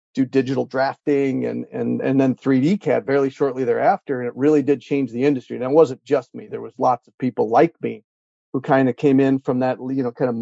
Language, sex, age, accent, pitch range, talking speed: English, male, 40-59, American, 125-140 Hz, 240 wpm